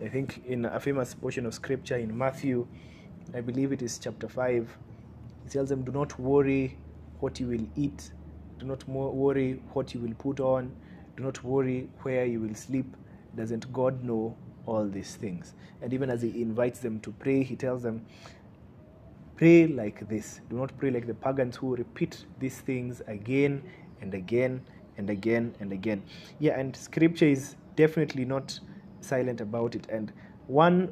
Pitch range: 115-140 Hz